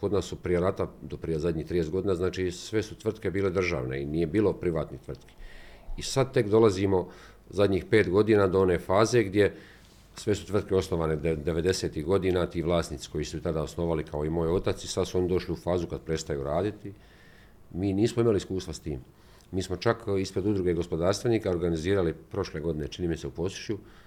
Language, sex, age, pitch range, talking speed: Croatian, male, 40-59, 85-100 Hz, 190 wpm